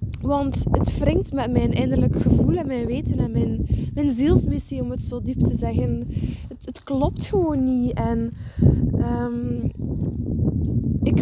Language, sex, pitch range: Dutch, female, 210-255 Hz